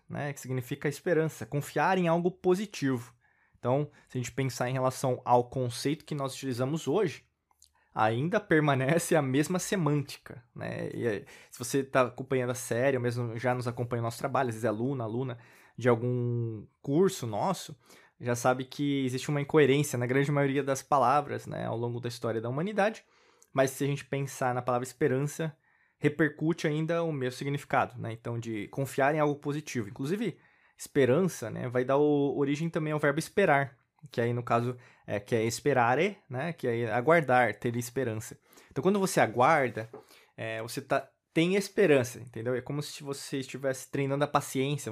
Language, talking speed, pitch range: Portuguese, 180 wpm, 125-150 Hz